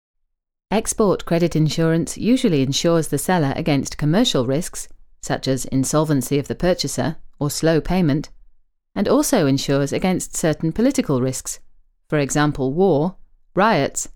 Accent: British